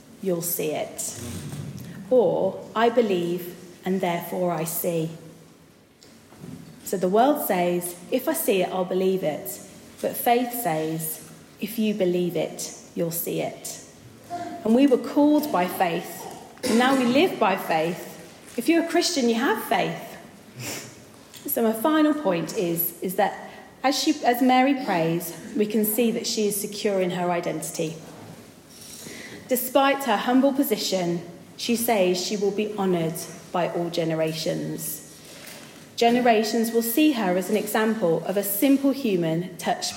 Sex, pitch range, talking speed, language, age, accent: female, 175-250 Hz, 145 wpm, English, 30-49, British